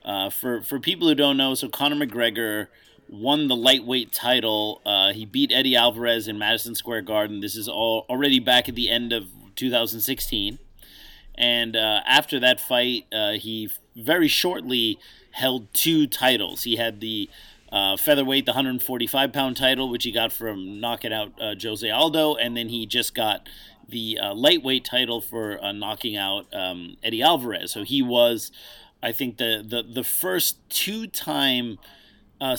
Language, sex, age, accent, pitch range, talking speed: English, male, 30-49, American, 110-135 Hz, 165 wpm